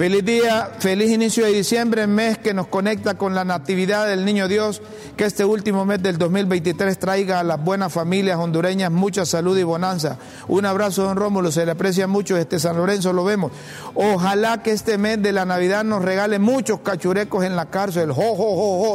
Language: Spanish